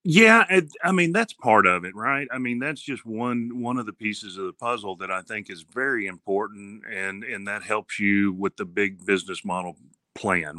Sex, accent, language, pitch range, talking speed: male, American, English, 90-110 Hz, 210 wpm